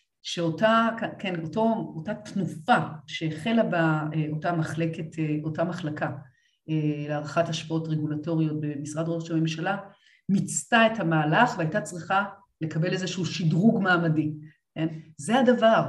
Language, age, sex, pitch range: Hebrew, 40-59, female, 155-210 Hz